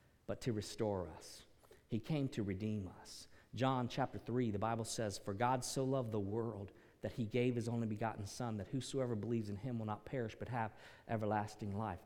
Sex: male